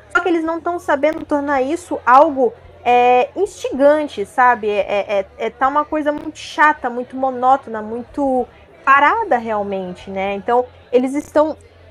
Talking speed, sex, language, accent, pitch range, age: 125 wpm, female, Portuguese, Brazilian, 250-350 Hz, 20-39